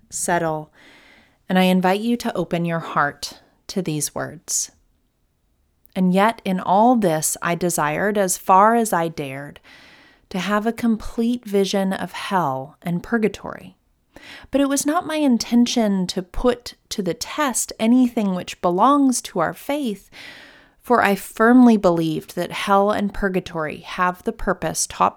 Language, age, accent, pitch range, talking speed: English, 30-49, American, 180-225 Hz, 150 wpm